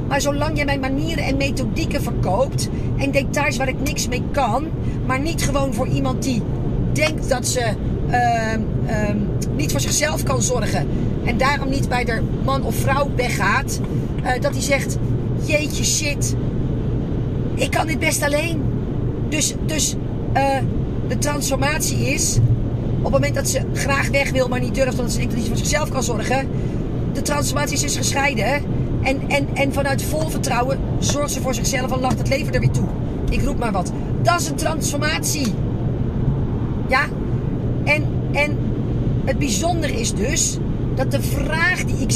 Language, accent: Dutch, Dutch